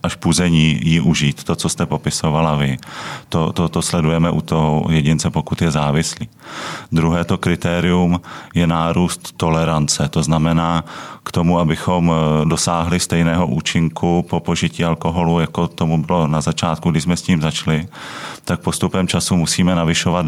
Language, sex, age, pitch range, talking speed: Czech, male, 30-49, 80-85 Hz, 150 wpm